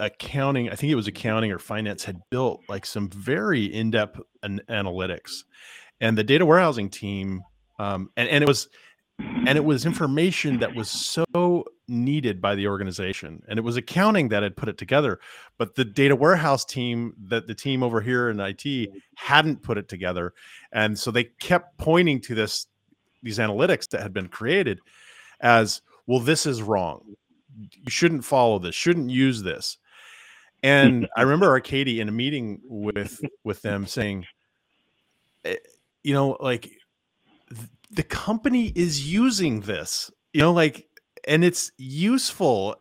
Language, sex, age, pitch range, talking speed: English, male, 30-49, 105-155 Hz, 150 wpm